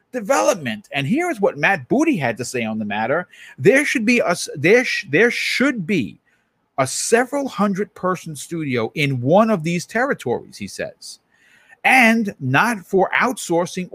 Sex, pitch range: male, 145-210 Hz